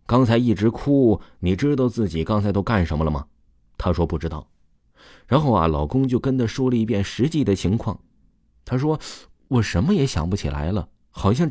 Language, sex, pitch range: Chinese, male, 75-110 Hz